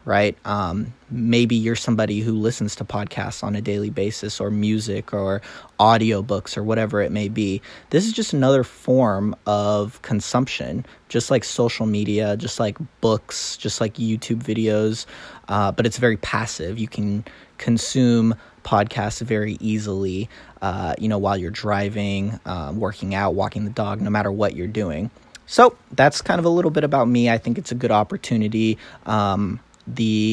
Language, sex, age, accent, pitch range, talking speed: English, male, 20-39, American, 105-120 Hz, 170 wpm